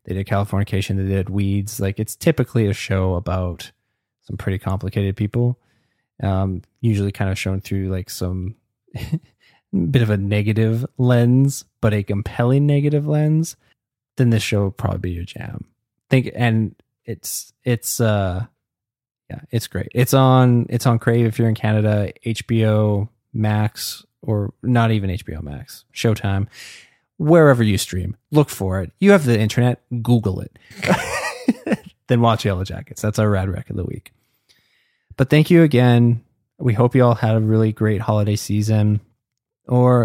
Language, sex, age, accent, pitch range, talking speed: English, male, 20-39, American, 100-125 Hz, 155 wpm